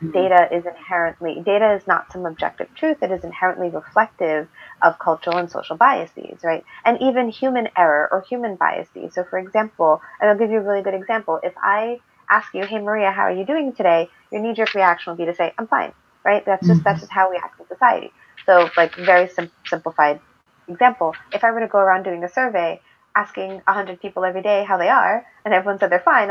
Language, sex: English, female